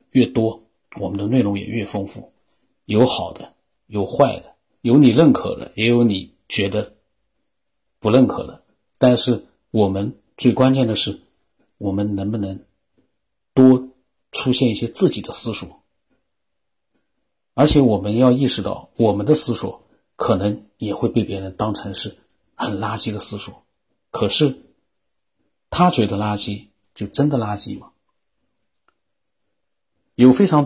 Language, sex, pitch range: Chinese, male, 100-130 Hz